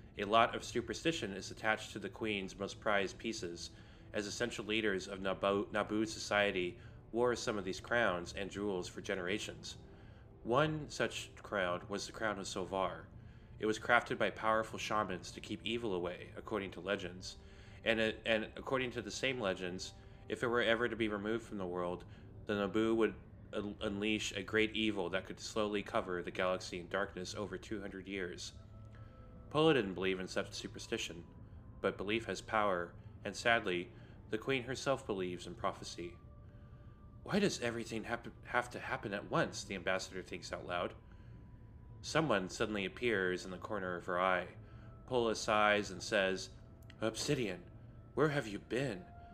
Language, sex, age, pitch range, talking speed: English, male, 30-49, 95-115 Hz, 160 wpm